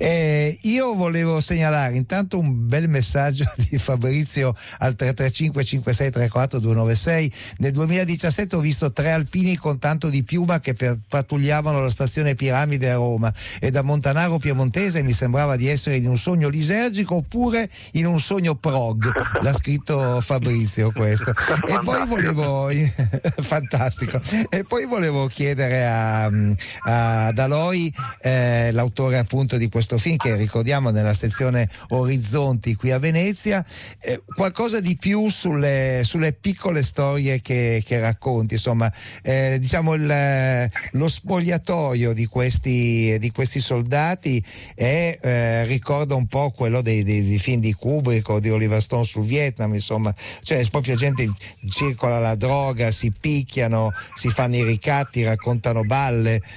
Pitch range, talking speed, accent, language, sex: 115-150 Hz, 140 wpm, native, Italian, male